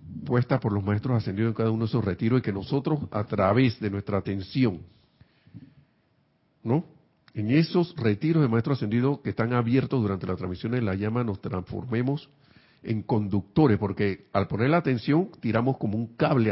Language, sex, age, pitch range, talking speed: Spanish, male, 50-69, 105-145 Hz, 175 wpm